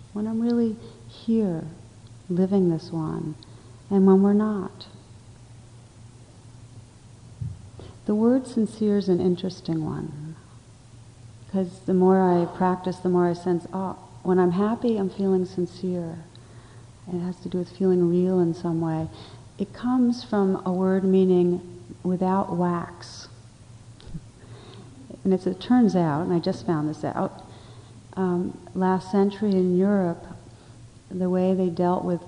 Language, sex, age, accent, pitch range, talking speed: English, female, 40-59, American, 120-185 Hz, 140 wpm